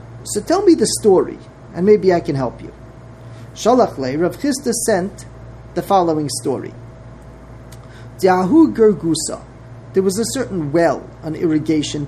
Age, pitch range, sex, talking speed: 40-59, 130-210 Hz, male, 130 wpm